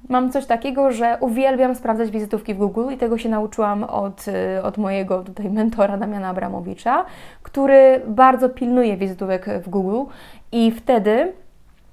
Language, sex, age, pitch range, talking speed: Polish, female, 20-39, 205-255 Hz, 140 wpm